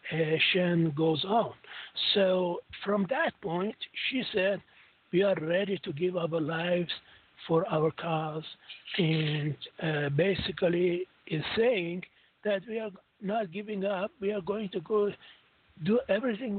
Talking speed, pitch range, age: 135 wpm, 165-205 Hz, 60-79